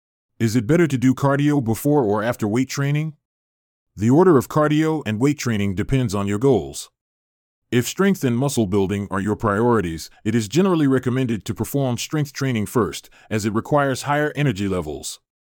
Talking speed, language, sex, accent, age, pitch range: 175 wpm, English, male, American, 30-49, 105-140 Hz